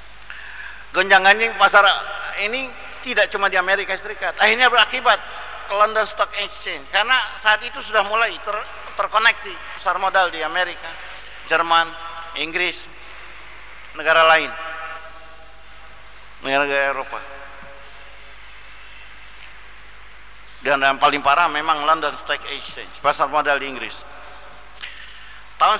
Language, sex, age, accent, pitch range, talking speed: English, male, 50-69, Indonesian, 145-185 Hz, 100 wpm